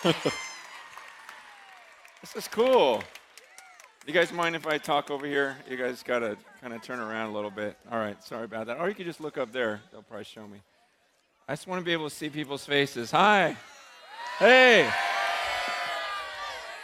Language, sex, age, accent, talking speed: English, male, 40-59, American, 175 wpm